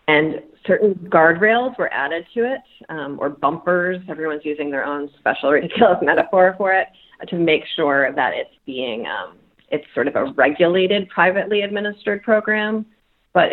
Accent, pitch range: American, 150-210 Hz